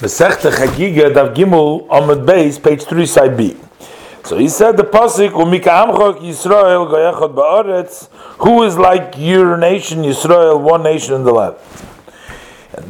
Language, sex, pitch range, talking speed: English, male, 125-170 Hz, 150 wpm